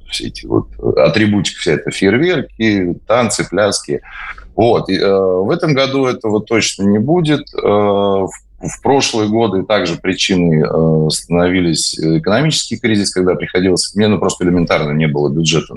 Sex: male